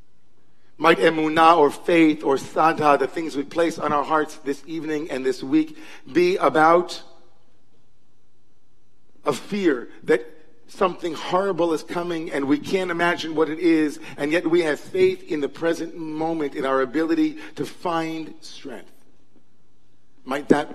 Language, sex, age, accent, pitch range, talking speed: English, male, 50-69, American, 135-170 Hz, 150 wpm